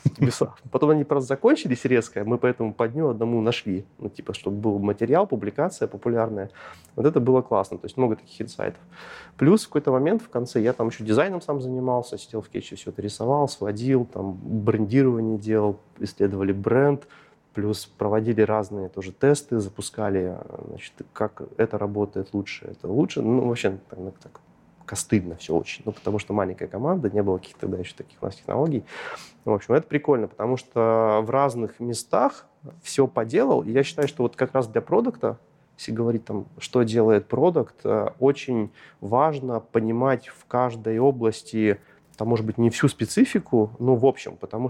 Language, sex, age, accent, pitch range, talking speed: Russian, male, 30-49, native, 110-130 Hz, 170 wpm